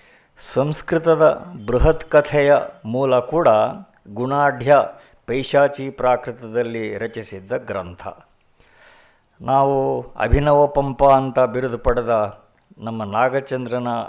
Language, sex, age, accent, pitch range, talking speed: Kannada, male, 60-79, native, 115-140 Hz, 75 wpm